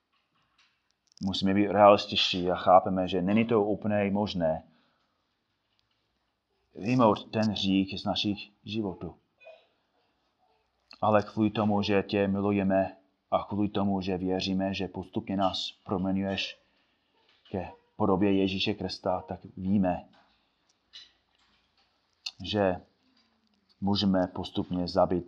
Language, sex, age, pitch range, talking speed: Czech, male, 30-49, 90-100 Hz, 95 wpm